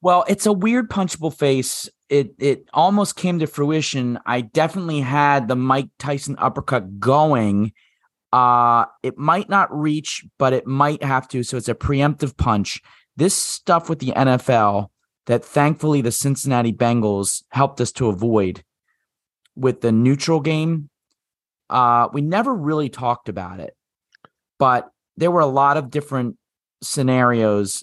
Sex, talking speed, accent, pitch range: male, 145 wpm, American, 115-155 Hz